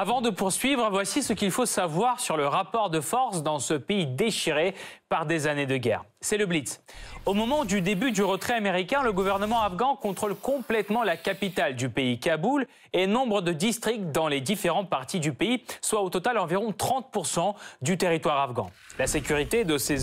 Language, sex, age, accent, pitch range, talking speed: French, male, 30-49, French, 155-220 Hz, 190 wpm